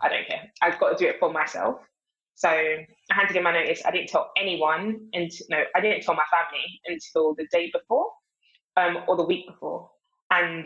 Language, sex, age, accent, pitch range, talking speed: English, female, 20-39, British, 160-190 Hz, 210 wpm